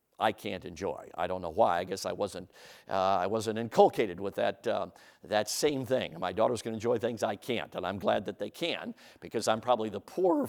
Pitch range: 115-170 Hz